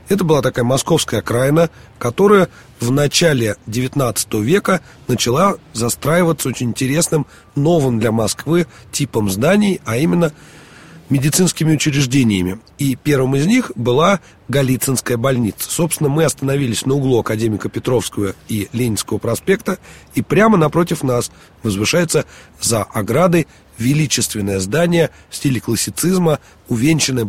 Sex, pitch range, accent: male, 110-155 Hz, native